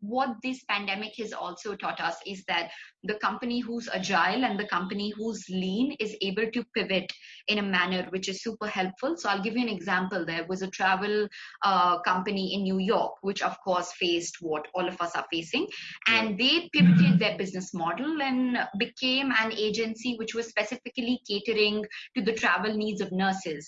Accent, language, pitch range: Indian, English, 185-220 Hz